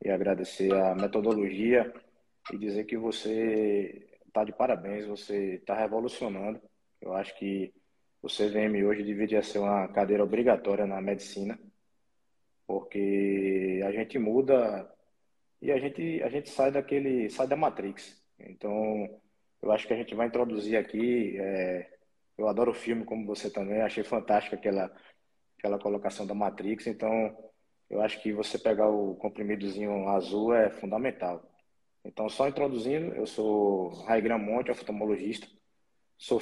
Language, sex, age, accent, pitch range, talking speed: Portuguese, male, 20-39, Brazilian, 100-115 Hz, 140 wpm